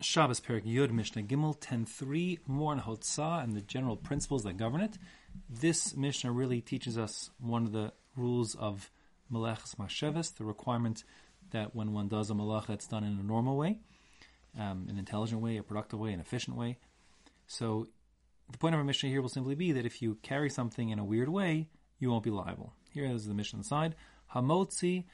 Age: 30-49